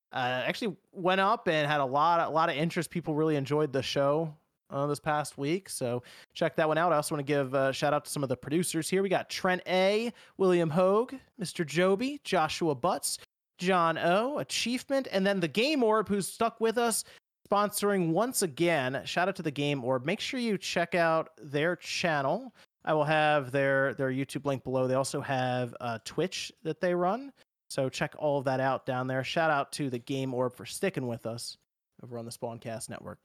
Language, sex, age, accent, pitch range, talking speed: English, male, 30-49, American, 140-190 Hz, 210 wpm